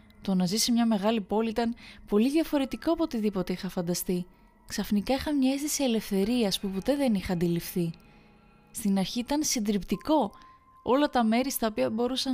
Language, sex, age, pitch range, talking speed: Greek, female, 20-39, 185-245 Hz, 160 wpm